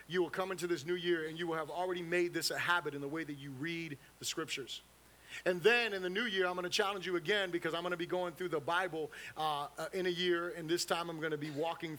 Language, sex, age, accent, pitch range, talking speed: English, male, 30-49, American, 155-190 Hz, 285 wpm